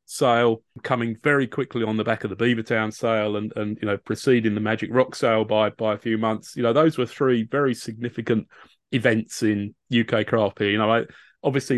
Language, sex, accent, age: English, male, British, 30-49